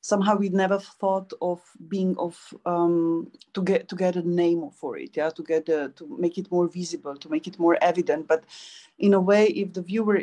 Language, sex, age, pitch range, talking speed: Czech, female, 30-49, 170-200 Hz, 215 wpm